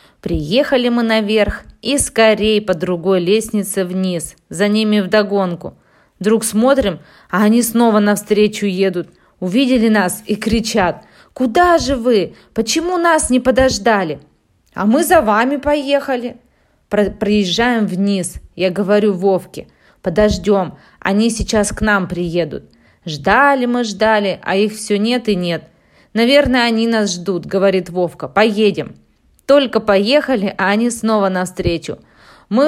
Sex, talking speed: female, 125 wpm